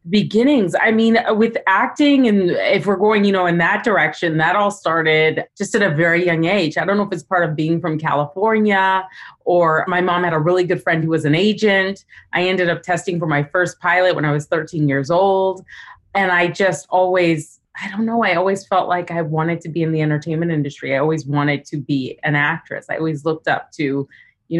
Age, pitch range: 30-49, 150-190 Hz